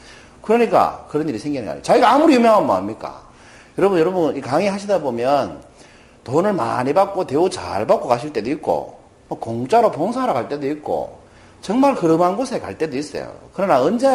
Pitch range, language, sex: 145-235 Hz, Korean, male